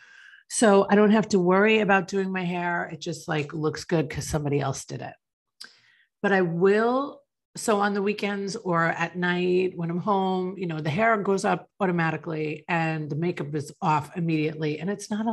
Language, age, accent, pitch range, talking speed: English, 40-59, American, 150-195 Hz, 195 wpm